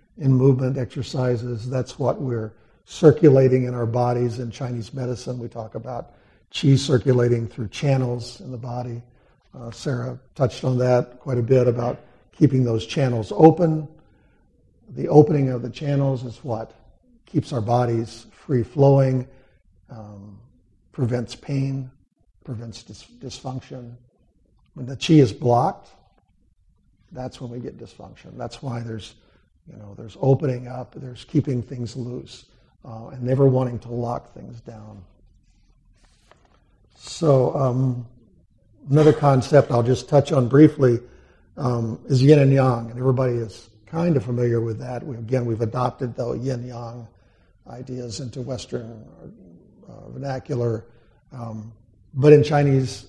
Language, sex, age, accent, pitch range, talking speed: English, male, 50-69, American, 115-135 Hz, 130 wpm